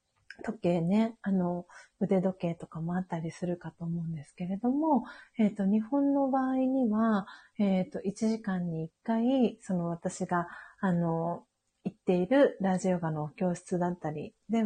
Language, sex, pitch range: Japanese, female, 175-225 Hz